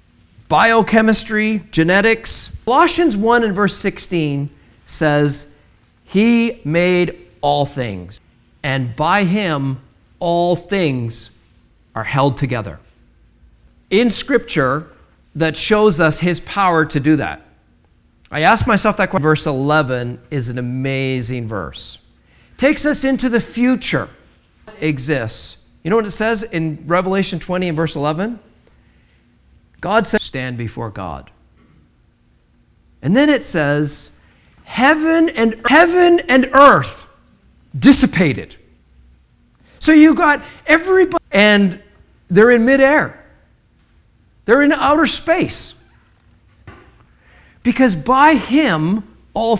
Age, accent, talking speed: 40-59, American, 110 wpm